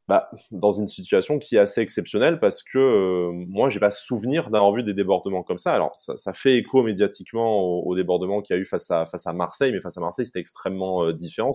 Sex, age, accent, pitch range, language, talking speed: male, 20-39, French, 90-110 Hz, French, 245 wpm